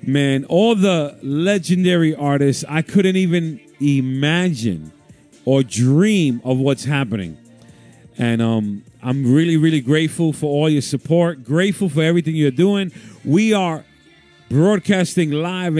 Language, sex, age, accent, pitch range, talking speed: English, male, 40-59, American, 135-175 Hz, 125 wpm